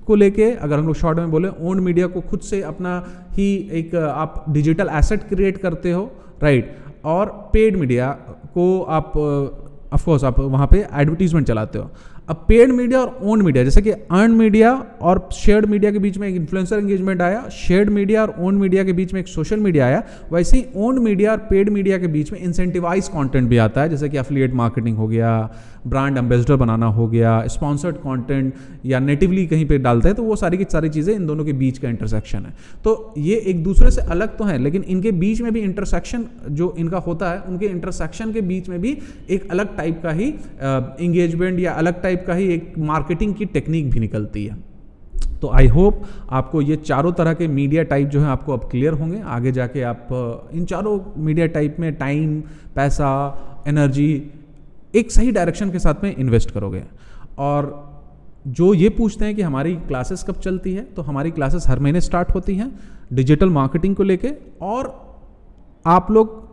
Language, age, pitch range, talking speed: Hindi, 30-49, 140-195 Hz, 195 wpm